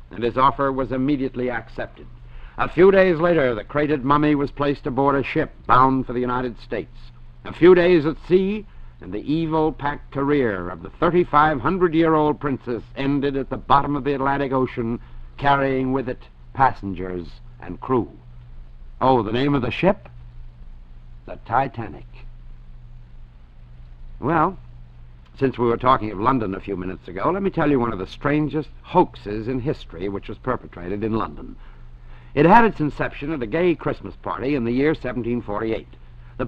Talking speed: 165 wpm